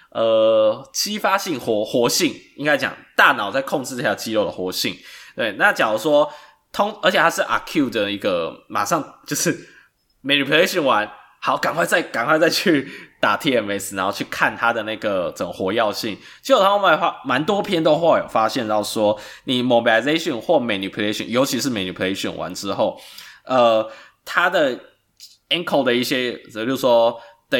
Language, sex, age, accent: Chinese, male, 20-39, native